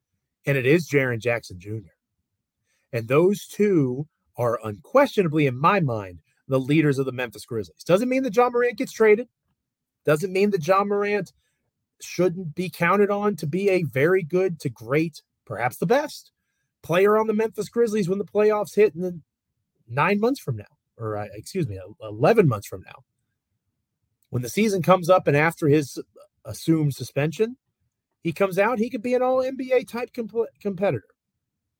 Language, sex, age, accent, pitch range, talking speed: English, male, 30-49, American, 125-200 Hz, 165 wpm